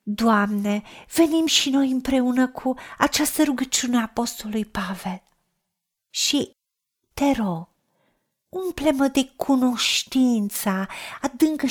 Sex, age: female, 40-59